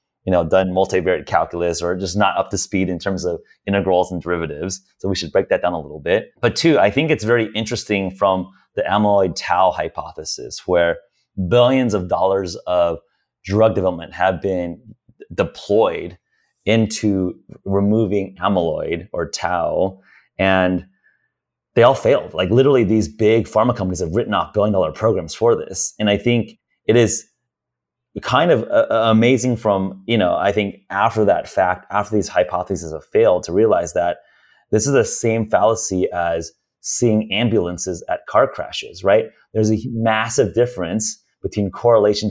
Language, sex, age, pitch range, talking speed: English, male, 30-49, 90-110 Hz, 160 wpm